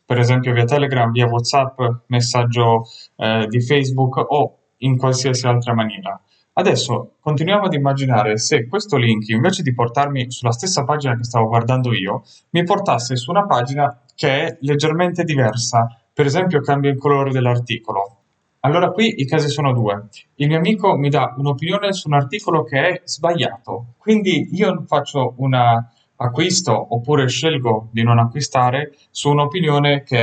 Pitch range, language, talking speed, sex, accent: 120-160 Hz, Italian, 155 wpm, male, native